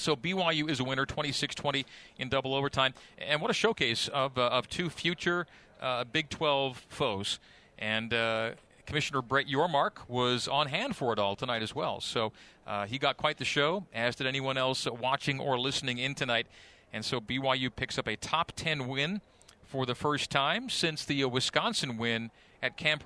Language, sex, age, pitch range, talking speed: English, male, 40-59, 120-140 Hz, 185 wpm